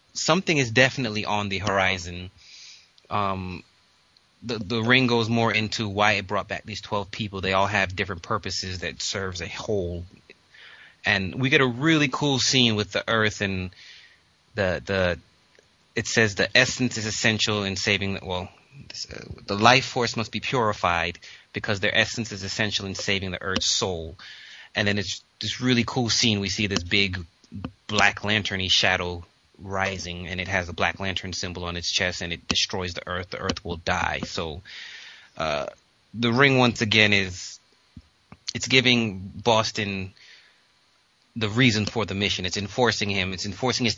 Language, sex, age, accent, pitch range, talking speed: English, male, 30-49, American, 95-115 Hz, 170 wpm